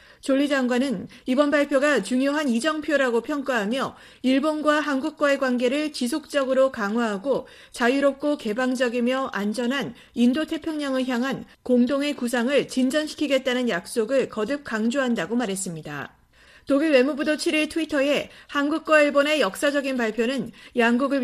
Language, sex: Korean, female